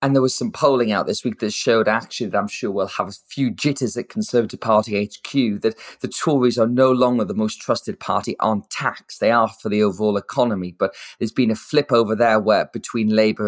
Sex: male